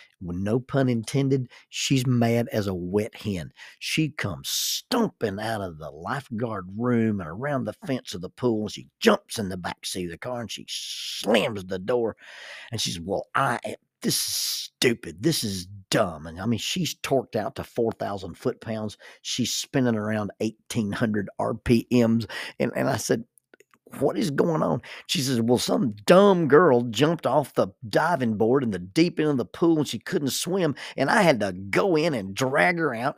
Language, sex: English, male